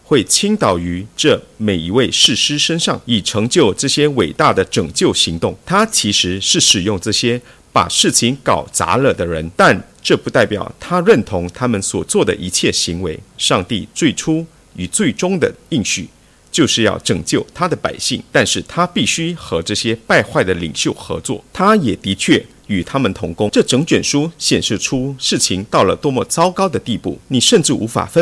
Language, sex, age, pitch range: English, male, 50-69, 95-160 Hz